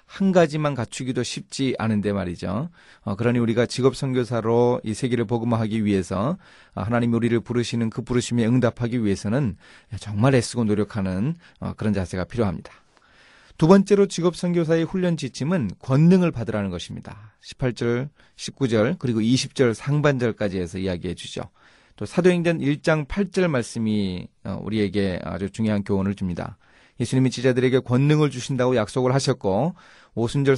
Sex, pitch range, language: male, 105-145 Hz, Korean